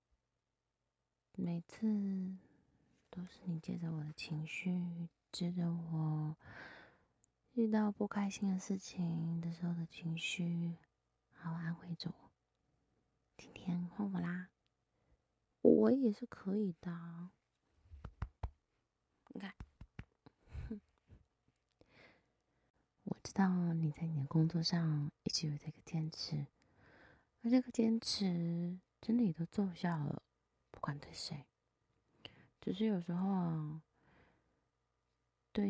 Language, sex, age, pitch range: Chinese, female, 20-39, 160-185 Hz